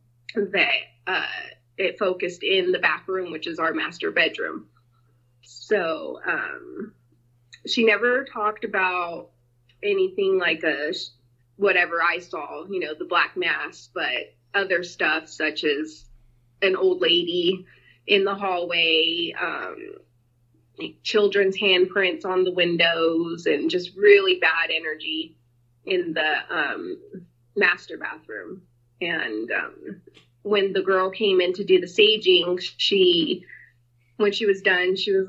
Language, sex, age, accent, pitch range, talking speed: English, female, 20-39, American, 160-210 Hz, 130 wpm